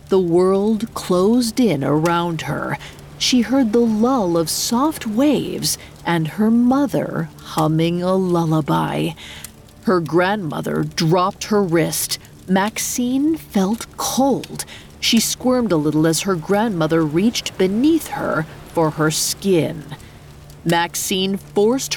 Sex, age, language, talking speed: female, 40-59, English, 115 wpm